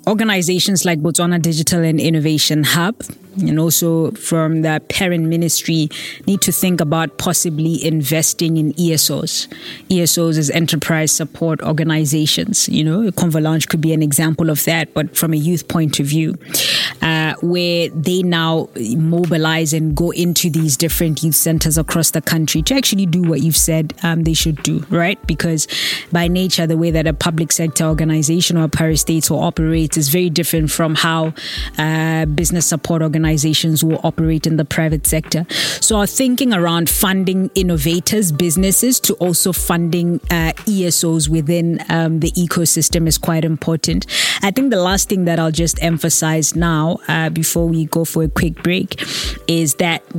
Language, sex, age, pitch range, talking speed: English, female, 20-39, 160-175 Hz, 165 wpm